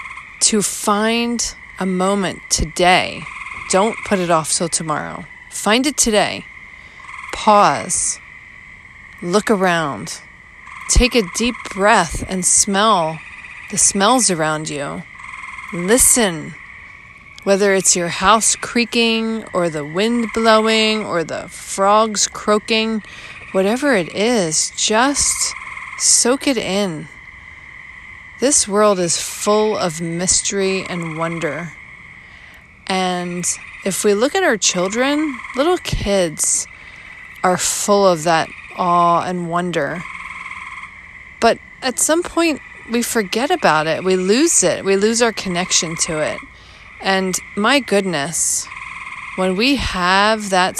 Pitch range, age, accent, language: 180-255 Hz, 40-59, American, English